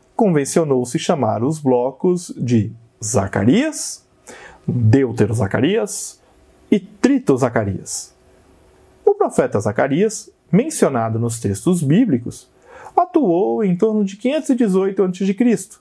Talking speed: 80 wpm